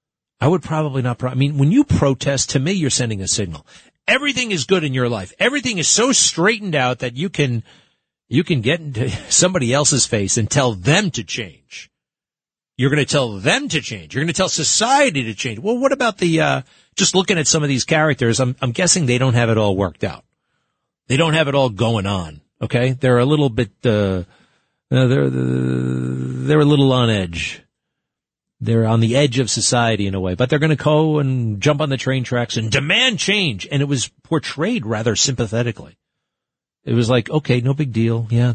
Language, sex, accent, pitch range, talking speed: English, male, American, 115-150 Hz, 210 wpm